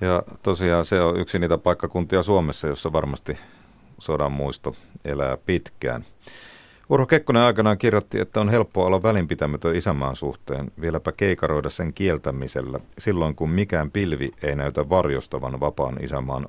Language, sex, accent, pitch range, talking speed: Finnish, male, native, 70-95 Hz, 140 wpm